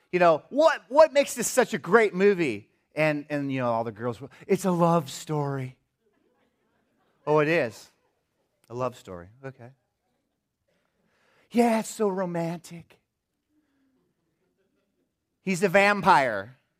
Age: 30-49